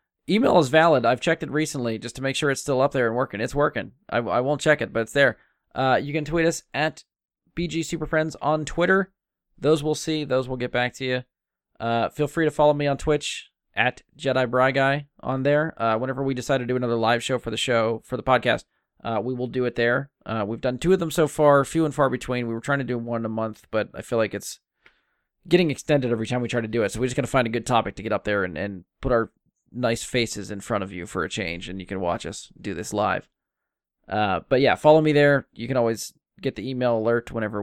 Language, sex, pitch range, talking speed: English, male, 115-145 Hz, 260 wpm